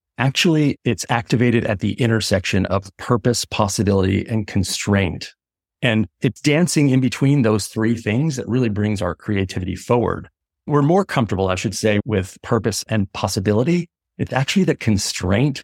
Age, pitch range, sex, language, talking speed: 40-59, 95-120 Hz, male, English, 150 wpm